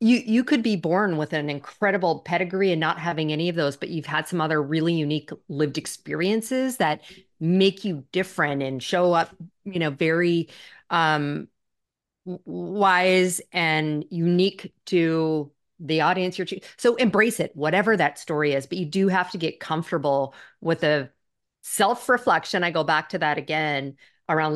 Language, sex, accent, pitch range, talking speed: English, female, American, 150-180 Hz, 165 wpm